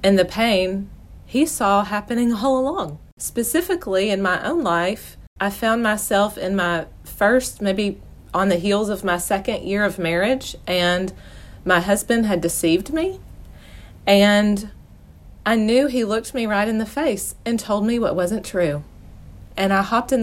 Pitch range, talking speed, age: 175-250 Hz, 165 wpm, 30-49